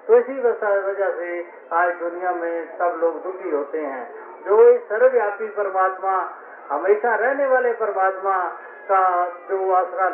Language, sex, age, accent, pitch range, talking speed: Hindi, male, 50-69, native, 175-285 Hz, 130 wpm